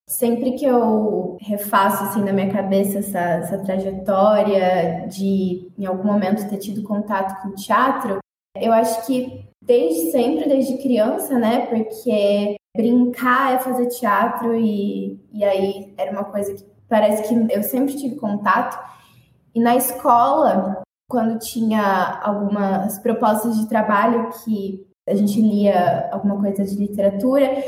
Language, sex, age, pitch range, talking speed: Portuguese, female, 10-29, 200-245 Hz, 135 wpm